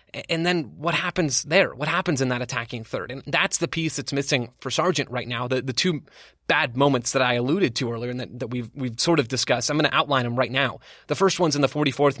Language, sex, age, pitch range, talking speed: English, male, 20-39, 125-155 Hz, 255 wpm